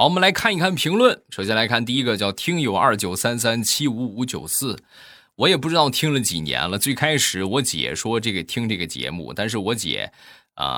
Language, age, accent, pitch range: Chinese, 20-39, native, 90-130 Hz